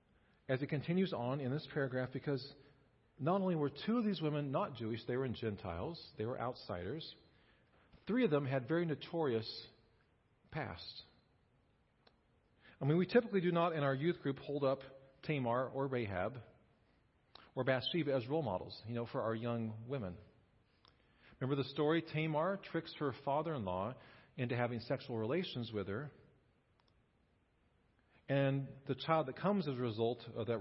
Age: 40-59